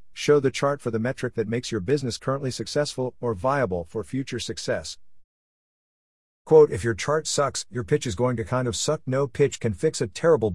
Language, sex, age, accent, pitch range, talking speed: English, male, 50-69, American, 95-130 Hz, 205 wpm